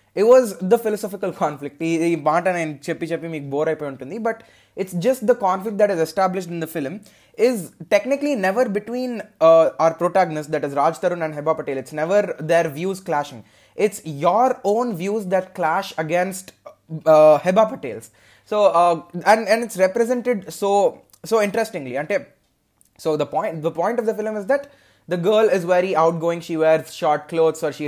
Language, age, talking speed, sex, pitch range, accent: Telugu, 20-39, 185 wpm, male, 155-205 Hz, native